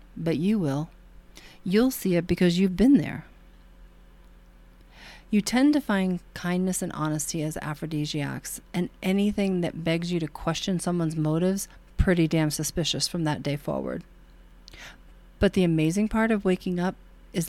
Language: English